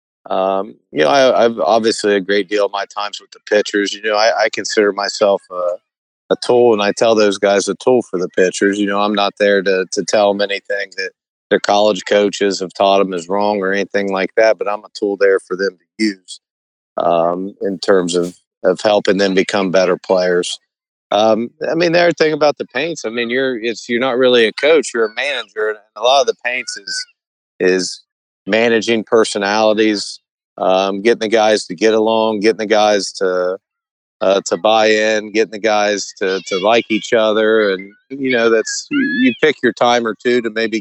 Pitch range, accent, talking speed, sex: 100-120 Hz, American, 210 wpm, male